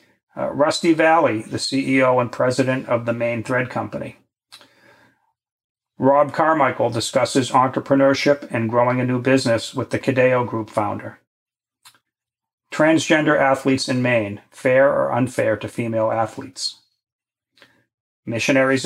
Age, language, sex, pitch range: 40-59, English, male, 115-135 Hz